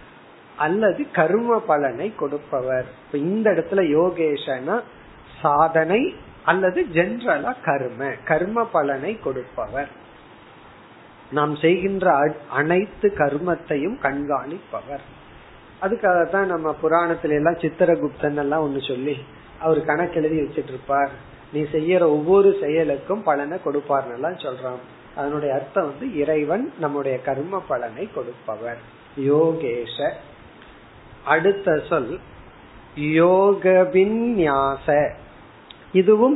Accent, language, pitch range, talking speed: native, Tamil, 140-185 Hz, 80 wpm